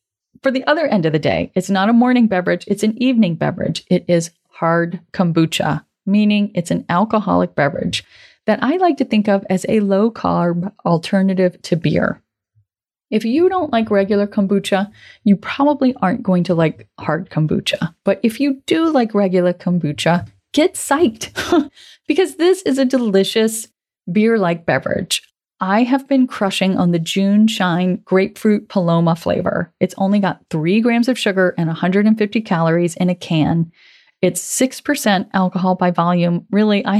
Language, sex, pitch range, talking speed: English, female, 175-220 Hz, 160 wpm